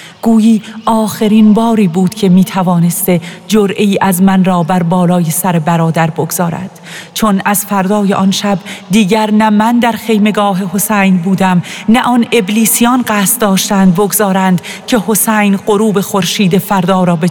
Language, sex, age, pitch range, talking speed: Persian, female, 40-59, 185-210 Hz, 140 wpm